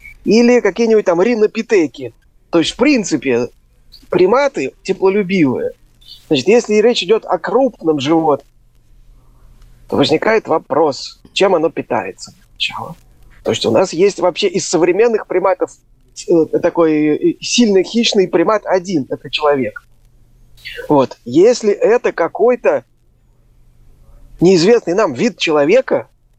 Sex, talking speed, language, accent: male, 110 wpm, Russian, native